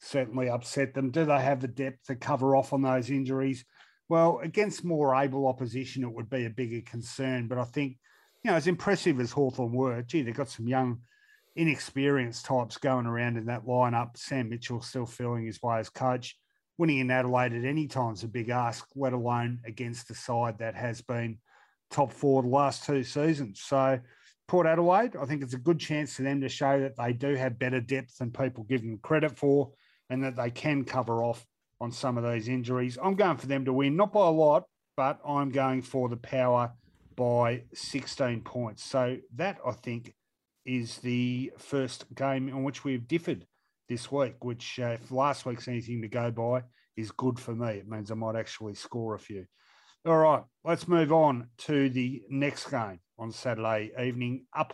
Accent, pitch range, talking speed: Australian, 120-140 Hz, 200 wpm